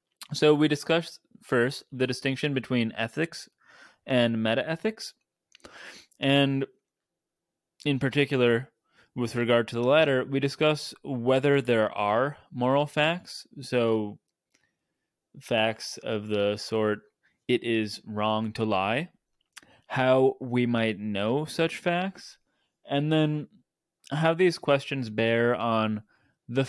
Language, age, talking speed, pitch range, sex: English, 20-39, 110 wpm, 110-140 Hz, male